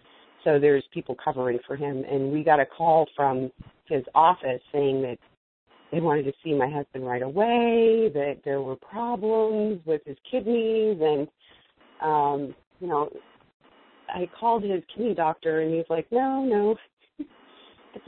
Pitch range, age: 145-200 Hz, 40-59